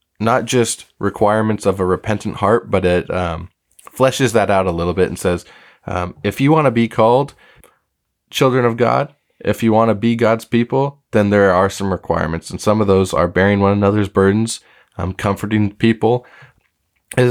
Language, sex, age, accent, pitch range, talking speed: English, male, 20-39, American, 95-115 Hz, 185 wpm